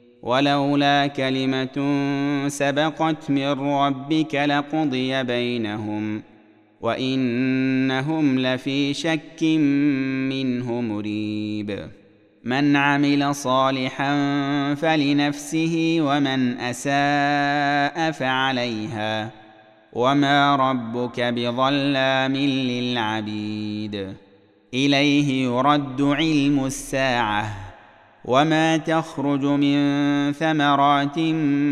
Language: Arabic